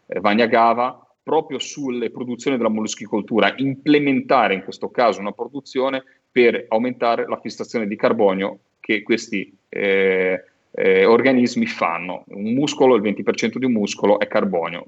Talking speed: 135 wpm